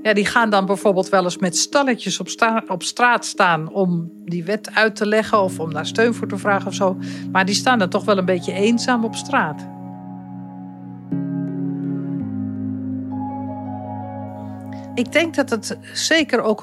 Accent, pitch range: Dutch, 185-240 Hz